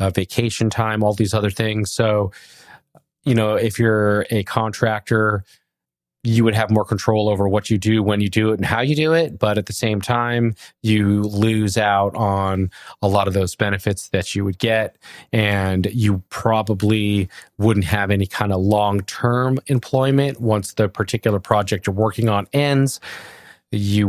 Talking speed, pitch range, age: 170 wpm, 100-115 Hz, 20-39